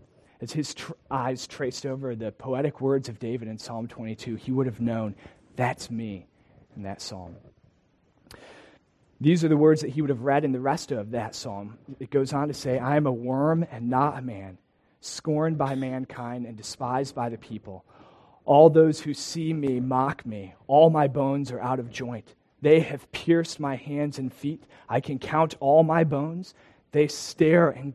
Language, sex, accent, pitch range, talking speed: English, male, American, 120-150 Hz, 190 wpm